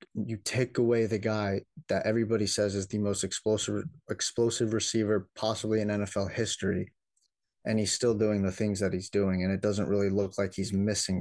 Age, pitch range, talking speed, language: 30-49, 100-115 Hz, 185 wpm, English